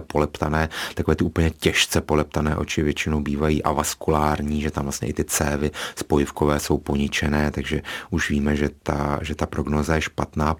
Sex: male